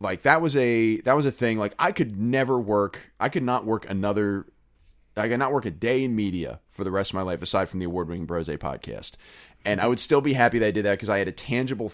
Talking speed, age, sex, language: 270 wpm, 20-39, male, English